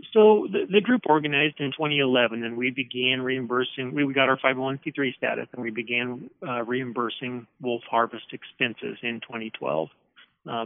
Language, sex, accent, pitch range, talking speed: English, male, American, 110-135 Hz, 135 wpm